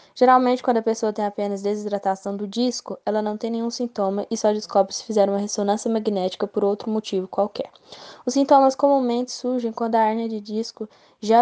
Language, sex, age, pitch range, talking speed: Portuguese, female, 10-29, 200-235 Hz, 190 wpm